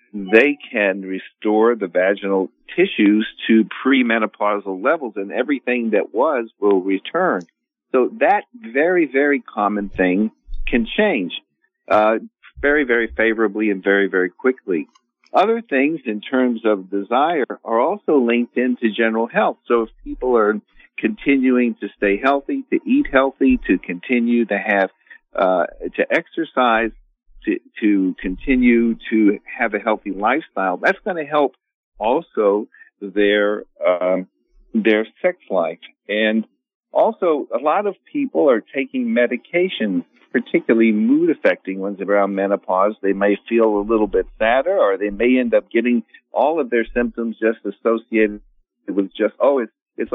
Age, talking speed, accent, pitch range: 50-69, 140 wpm, American, 105-135 Hz